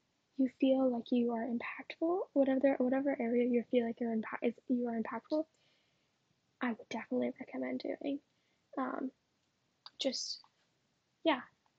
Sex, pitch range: female, 245-285 Hz